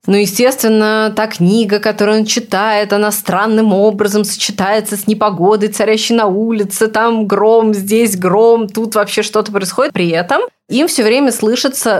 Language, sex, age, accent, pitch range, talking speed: Russian, female, 20-39, native, 165-210 Hz, 150 wpm